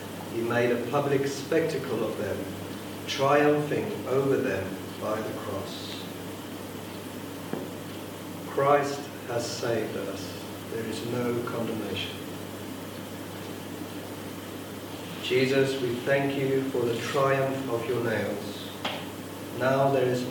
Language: English